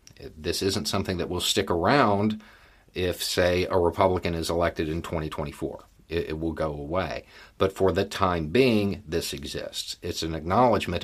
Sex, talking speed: male, 165 wpm